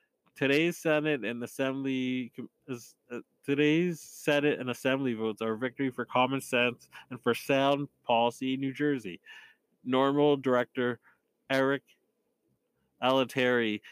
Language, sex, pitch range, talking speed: English, male, 120-135 Hz, 110 wpm